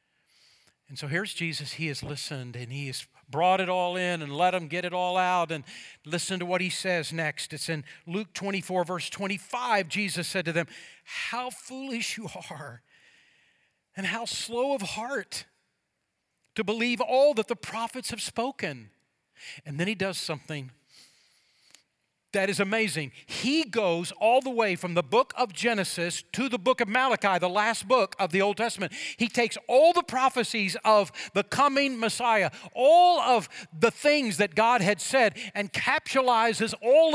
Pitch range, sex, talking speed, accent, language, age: 180-255 Hz, male, 170 wpm, American, English, 50-69